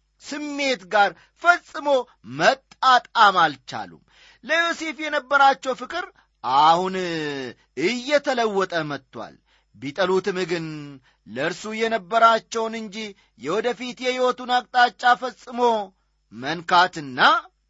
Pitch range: 160-245 Hz